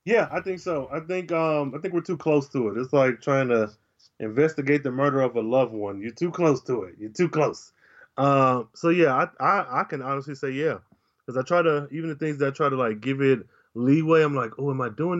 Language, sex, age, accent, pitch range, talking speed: English, male, 20-39, American, 120-150 Hz, 255 wpm